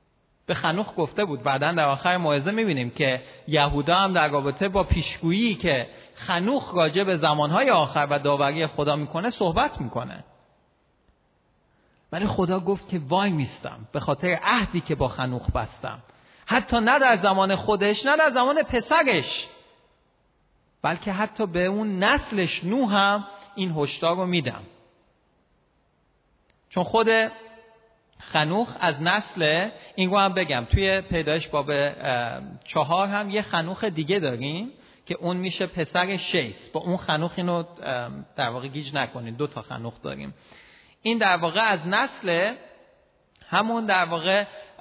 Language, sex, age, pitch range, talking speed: Persian, male, 40-59, 145-205 Hz, 135 wpm